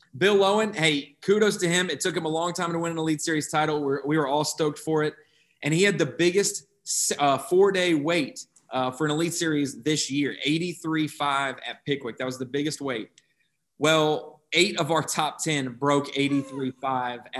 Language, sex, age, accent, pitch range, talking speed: English, male, 20-39, American, 135-160 Hz, 195 wpm